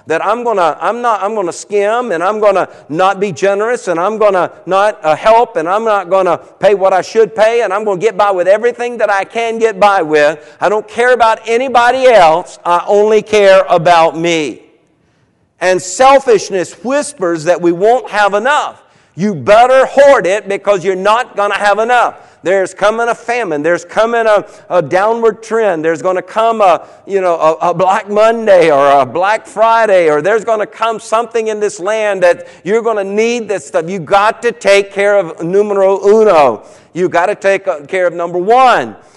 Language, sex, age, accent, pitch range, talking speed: English, male, 50-69, American, 180-225 Hz, 195 wpm